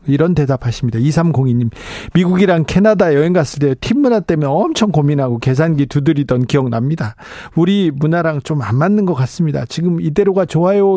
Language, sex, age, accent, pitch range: Korean, male, 40-59, native, 135-185 Hz